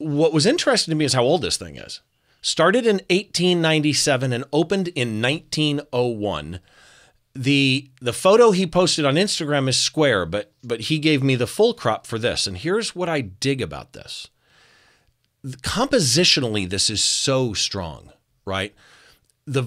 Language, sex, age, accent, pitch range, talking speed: English, male, 40-59, American, 115-160 Hz, 160 wpm